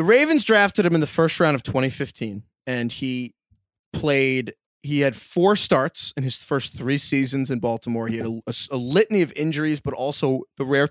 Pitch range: 125-175 Hz